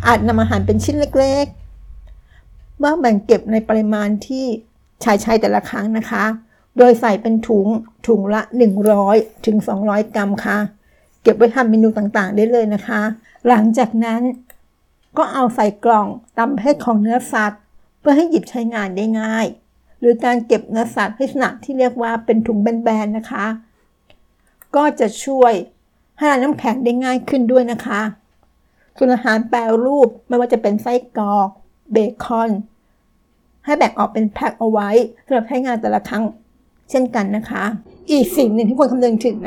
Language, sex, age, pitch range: Thai, female, 60-79, 215-250 Hz